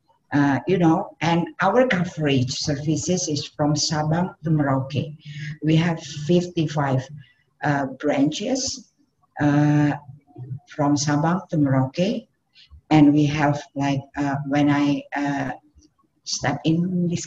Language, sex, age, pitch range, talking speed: English, female, 50-69, 140-160 Hz, 115 wpm